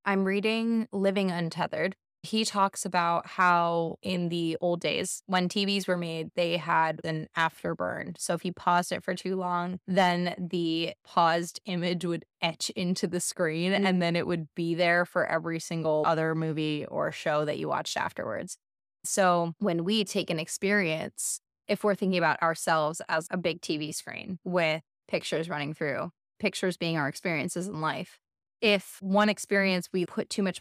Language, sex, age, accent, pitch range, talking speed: English, female, 20-39, American, 170-195 Hz, 170 wpm